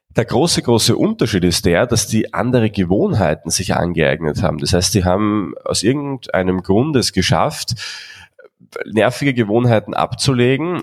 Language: German